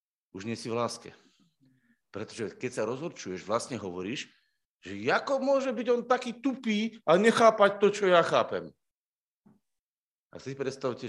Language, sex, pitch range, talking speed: Slovak, male, 110-140 Hz, 145 wpm